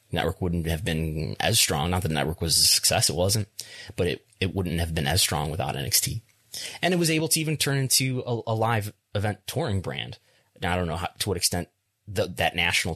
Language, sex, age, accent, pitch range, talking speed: English, male, 30-49, American, 90-115 Hz, 225 wpm